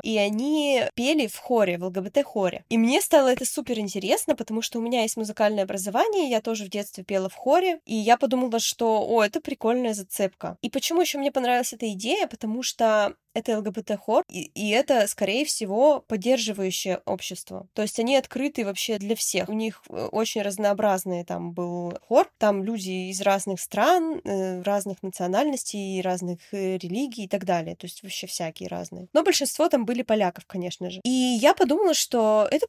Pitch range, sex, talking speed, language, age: 195-265 Hz, female, 175 wpm, Russian, 20-39